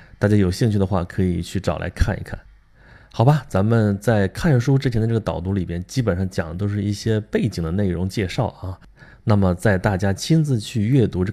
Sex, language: male, Chinese